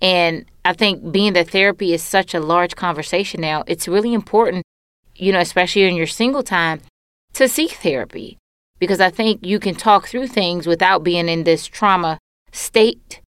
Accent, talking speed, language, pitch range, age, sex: American, 175 wpm, English, 160-195 Hz, 20-39, female